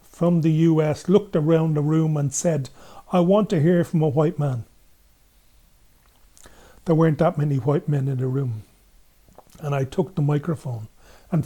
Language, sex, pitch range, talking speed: English, male, 140-175 Hz, 170 wpm